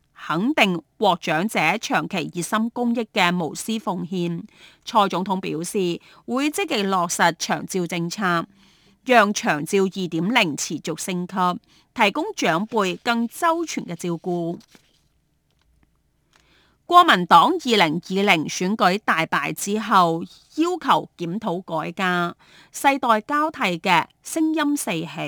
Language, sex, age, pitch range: Chinese, female, 30-49, 175-245 Hz